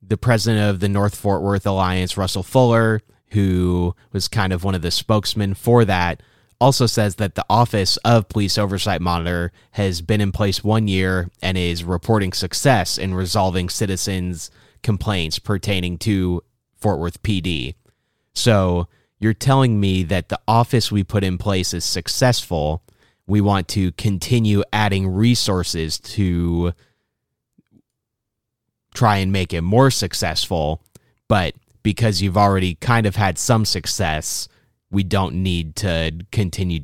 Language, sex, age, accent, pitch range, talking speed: English, male, 30-49, American, 90-110 Hz, 145 wpm